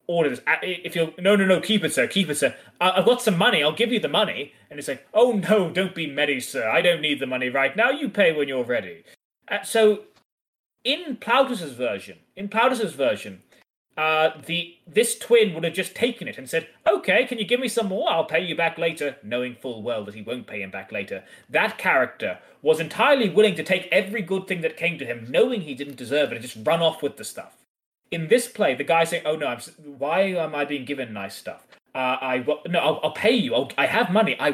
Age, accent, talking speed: 20-39, British, 235 wpm